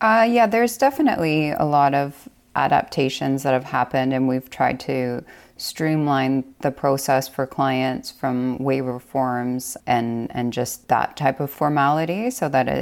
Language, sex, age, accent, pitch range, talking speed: English, female, 20-39, American, 125-145 Hz, 150 wpm